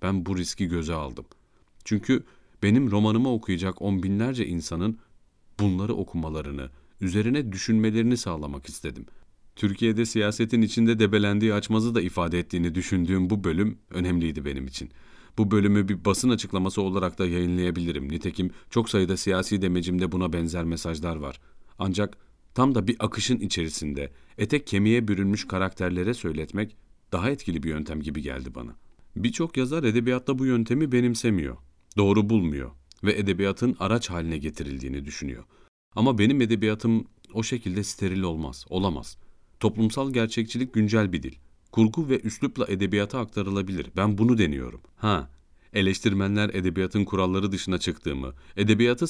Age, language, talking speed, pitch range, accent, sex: 40-59, Turkish, 135 wpm, 85-110 Hz, native, male